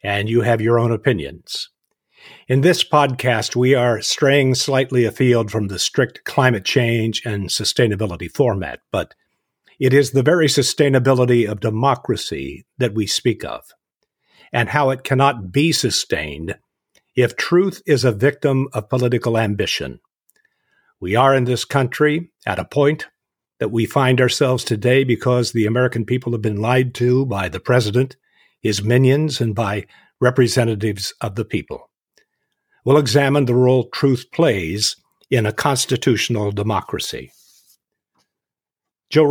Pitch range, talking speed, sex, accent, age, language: 110-135 Hz, 140 wpm, male, American, 50-69, English